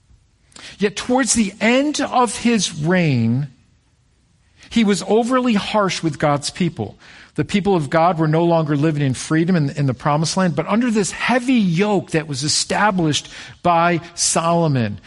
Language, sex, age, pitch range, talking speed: English, male, 50-69, 150-230 Hz, 155 wpm